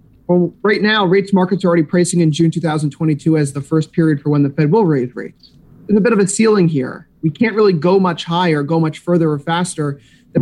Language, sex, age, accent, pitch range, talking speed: English, male, 30-49, American, 150-175 Hz, 235 wpm